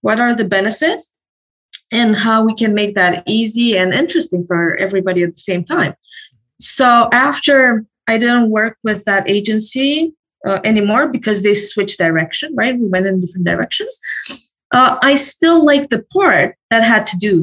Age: 20-39